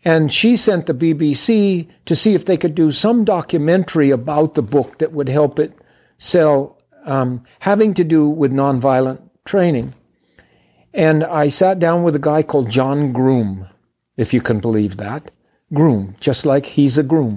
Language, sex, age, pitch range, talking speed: English, male, 50-69, 125-165 Hz, 170 wpm